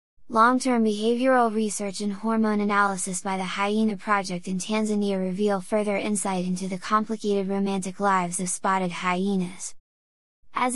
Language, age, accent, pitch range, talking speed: English, 20-39, American, 195-225 Hz, 135 wpm